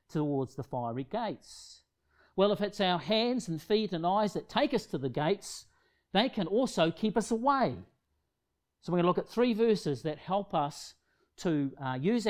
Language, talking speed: English, 190 wpm